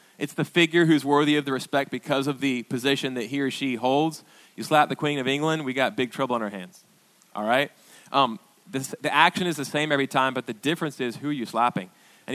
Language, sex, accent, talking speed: English, male, American, 240 wpm